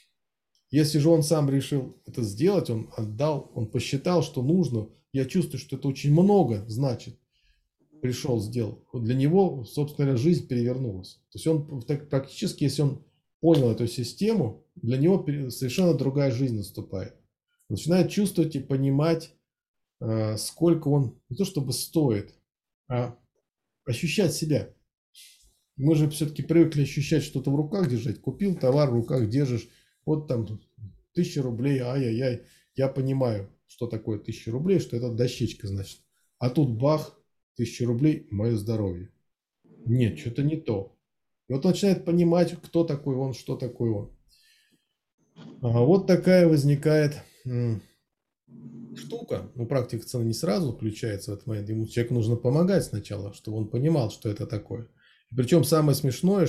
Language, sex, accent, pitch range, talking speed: Russian, male, native, 115-155 Hz, 140 wpm